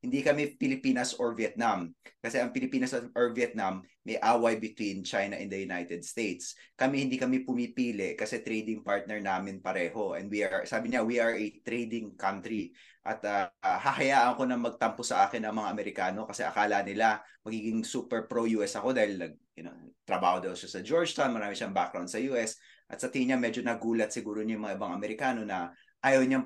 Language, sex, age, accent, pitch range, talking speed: English, male, 20-39, Filipino, 110-145 Hz, 190 wpm